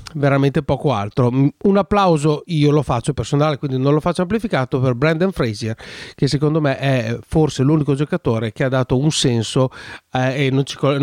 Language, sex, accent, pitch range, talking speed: Italian, male, native, 130-170 Hz, 175 wpm